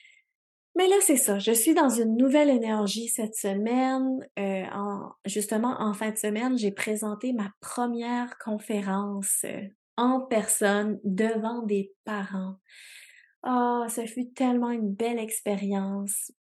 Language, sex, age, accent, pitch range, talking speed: French, female, 20-39, Canadian, 200-245 Hz, 125 wpm